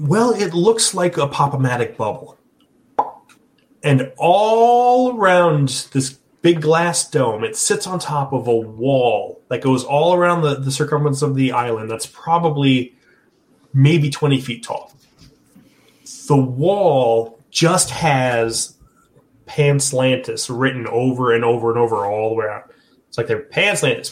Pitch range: 130-185 Hz